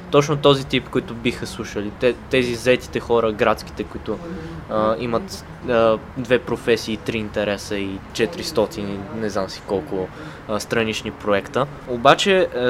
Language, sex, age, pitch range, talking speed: Bulgarian, male, 20-39, 110-130 Hz, 120 wpm